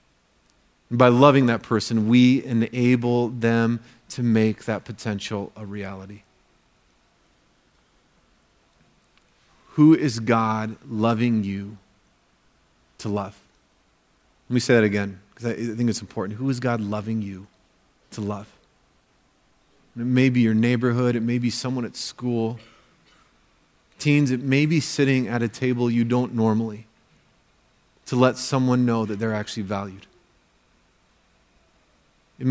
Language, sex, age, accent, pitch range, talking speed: English, male, 30-49, American, 110-130 Hz, 125 wpm